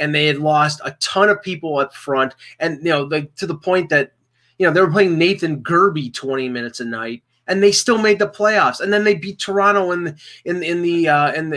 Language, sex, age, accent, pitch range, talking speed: English, male, 30-49, American, 125-160 Hz, 235 wpm